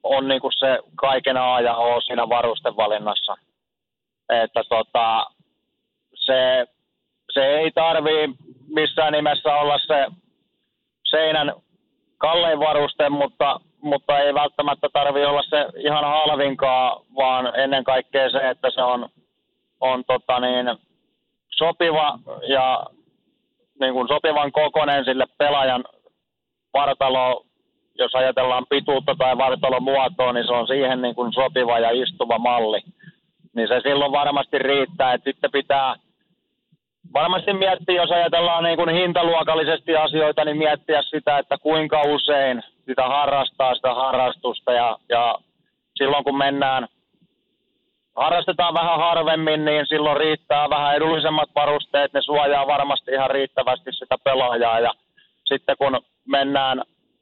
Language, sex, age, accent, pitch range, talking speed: Finnish, male, 30-49, native, 130-155 Hz, 125 wpm